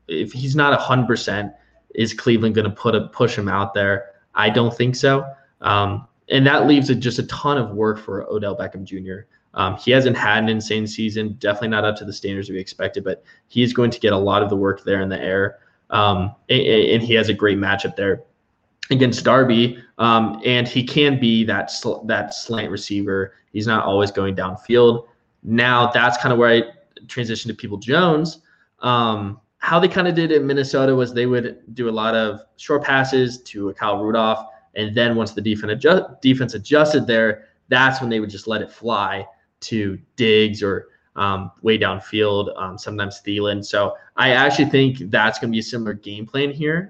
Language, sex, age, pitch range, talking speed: English, male, 20-39, 105-125 Hz, 205 wpm